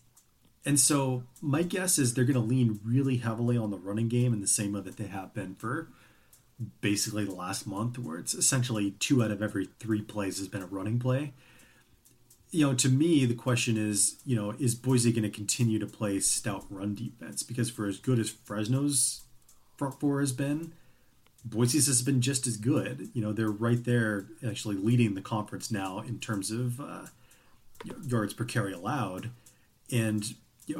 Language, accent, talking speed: English, American, 190 wpm